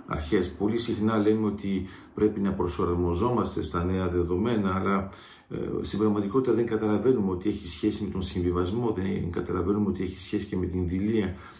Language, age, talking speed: Greek, 50-69, 165 wpm